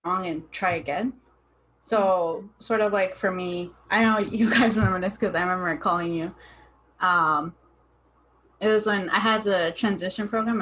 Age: 20-39